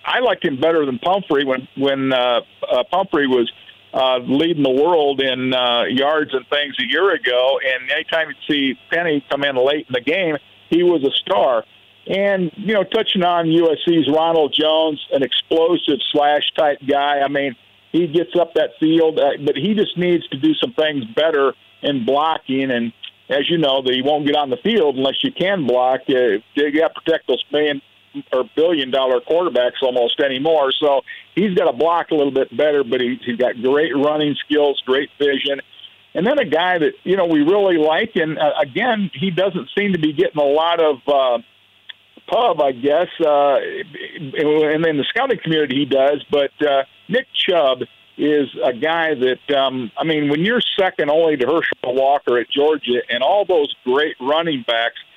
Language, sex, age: English, male, 50-69